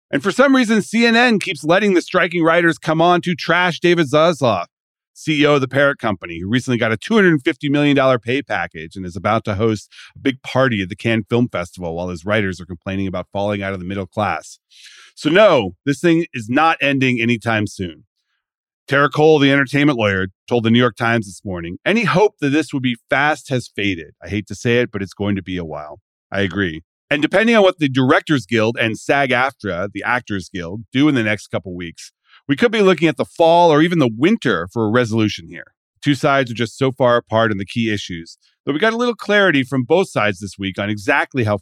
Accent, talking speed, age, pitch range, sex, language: American, 225 wpm, 40-59, 100-150 Hz, male, English